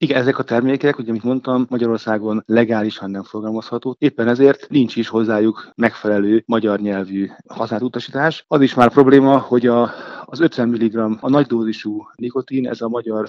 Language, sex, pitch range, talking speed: Hungarian, male, 110-130 Hz, 165 wpm